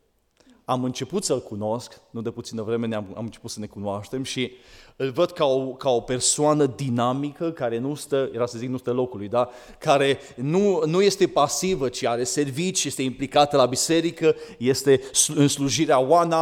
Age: 30-49